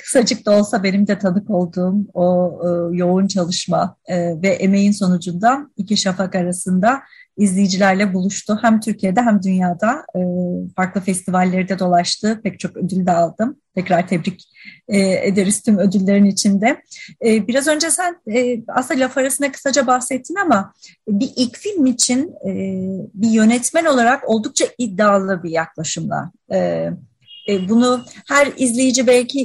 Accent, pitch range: native, 195-245 Hz